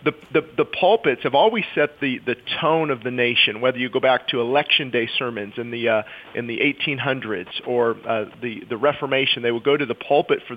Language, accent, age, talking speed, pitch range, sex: English, American, 40-59, 220 wpm, 120-140 Hz, male